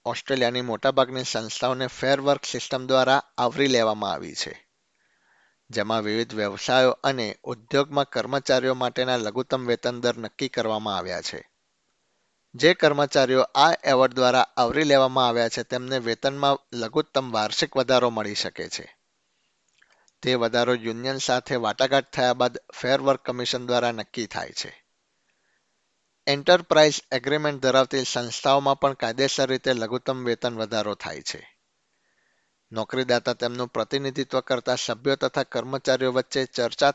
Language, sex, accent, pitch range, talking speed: Gujarati, male, native, 120-140 Hz, 100 wpm